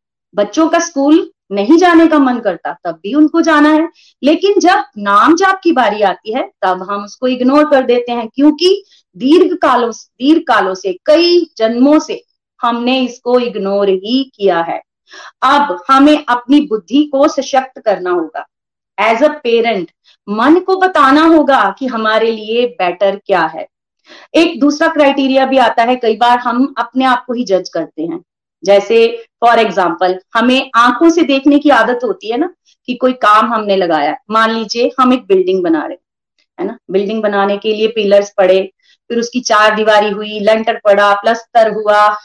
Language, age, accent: Hindi, 30-49, native